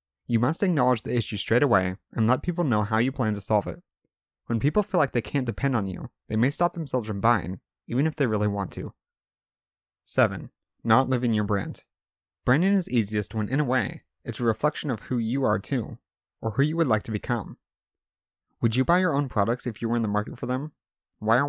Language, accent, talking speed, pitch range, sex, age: English, American, 225 wpm, 105-140 Hz, male, 30-49